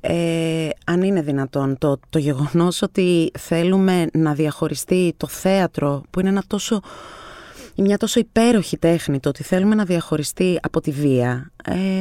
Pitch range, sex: 160-200 Hz, female